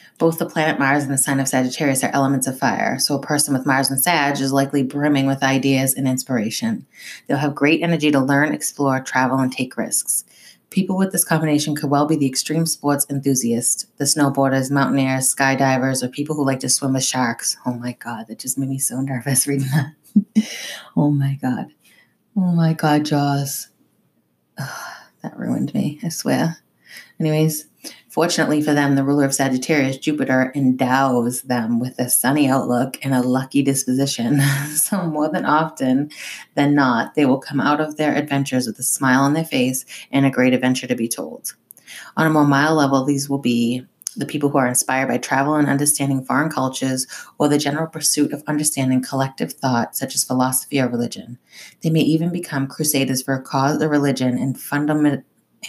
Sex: female